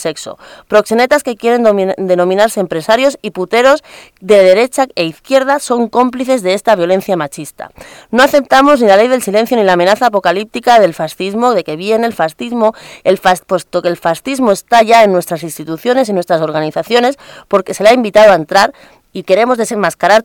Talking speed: 180 wpm